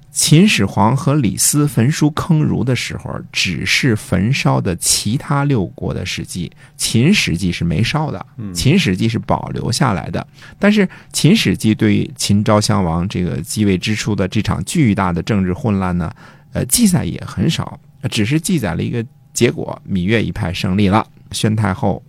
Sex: male